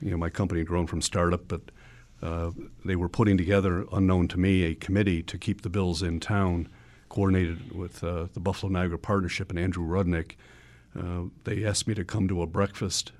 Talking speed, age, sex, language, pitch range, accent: 195 wpm, 50-69, male, English, 85-100 Hz, American